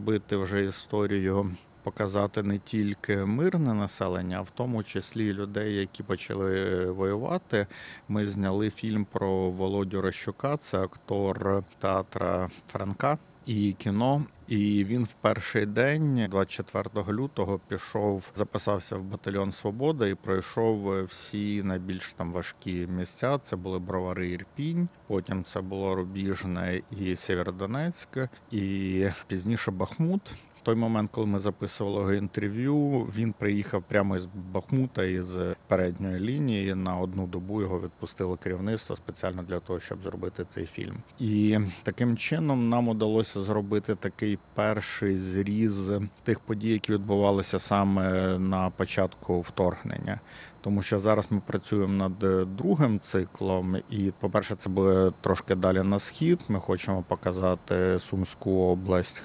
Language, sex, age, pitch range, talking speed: Russian, male, 50-69, 95-110 Hz, 130 wpm